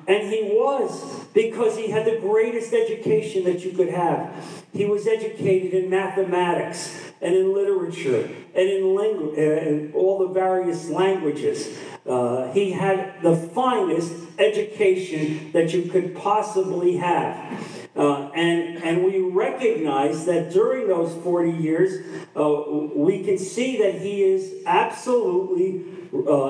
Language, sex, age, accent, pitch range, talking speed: English, male, 50-69, American, 160-210 Hz, 135 wpm